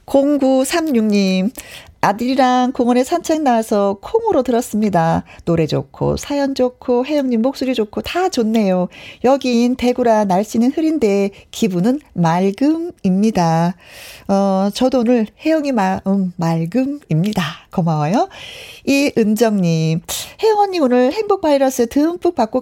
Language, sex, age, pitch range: Korean, female, 40-59, 195-285 Hz